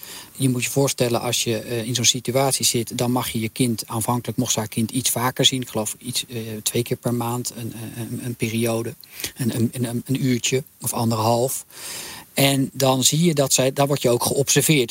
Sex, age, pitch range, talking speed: male, 40-59, 115-140 Hz, 205 wpm